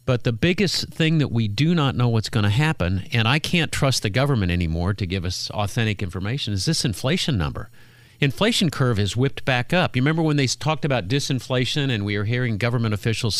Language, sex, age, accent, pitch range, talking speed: English, male, 50-69, American, 110-150 Hz, 215 wpm